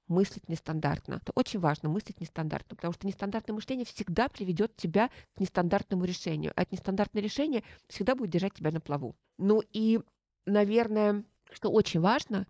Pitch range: 170-215 Hz